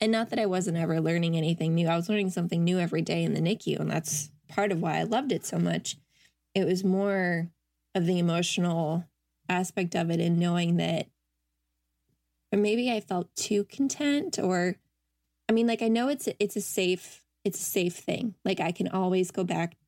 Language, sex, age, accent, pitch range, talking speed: English, female, 20-39, American, 170-205 Hz, 200 wpm